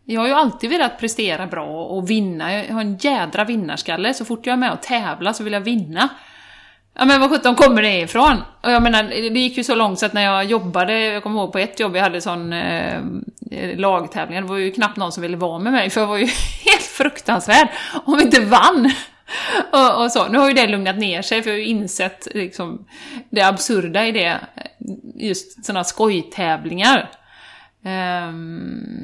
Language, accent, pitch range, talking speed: Swedish, native, 190-255 Hz, 210 wpm